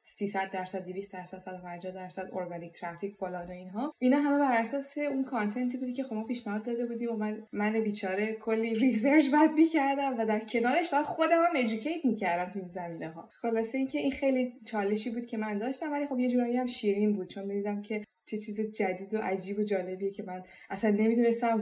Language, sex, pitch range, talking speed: Persian, female, 195-260 Hz, 210 wpm